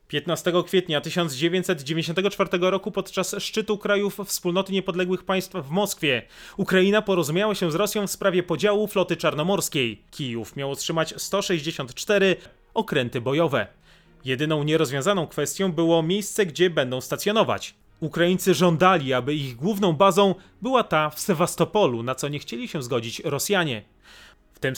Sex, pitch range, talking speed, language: male, 140-195 Hz, 135 wpm, Polish